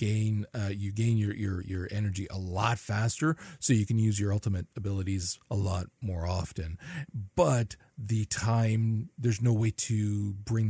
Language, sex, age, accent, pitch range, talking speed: English, male, 40-59, American, 95-120 Hz, 170 wpm